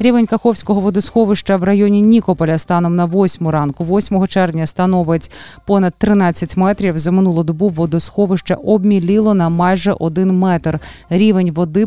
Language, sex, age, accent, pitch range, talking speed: Ukrainian, female, 20-39, native, 165-200 Hz, 135 wpm